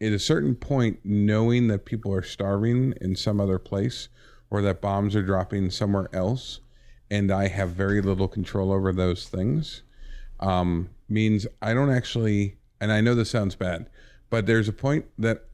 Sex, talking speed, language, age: male, 175 wpm, English, 50-69